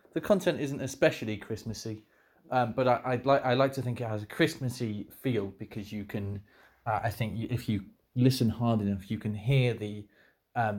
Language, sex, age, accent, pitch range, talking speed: English, male, 30-49, British, 110-135 Hz, 190 wpm